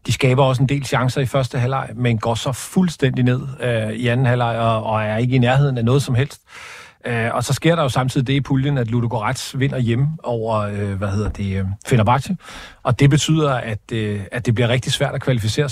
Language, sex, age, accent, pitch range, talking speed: Danish, male, 40-59, native, 115-140 Hz, 225 wpm